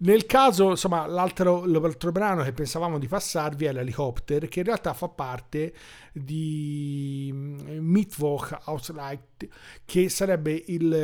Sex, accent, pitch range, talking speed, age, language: male, native, 140-180 Hz, 130 wpm, 40-59, Italian